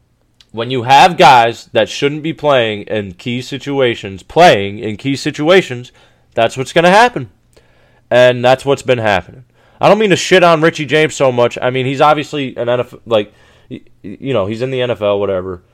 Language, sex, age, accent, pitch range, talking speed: English, male, 20-39, American, 115-155 Hz, 185 wpm